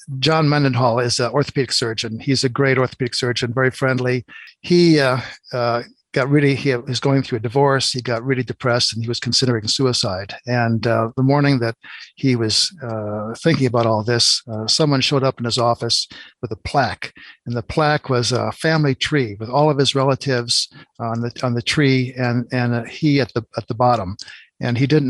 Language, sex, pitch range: English, male, 120-135 Hz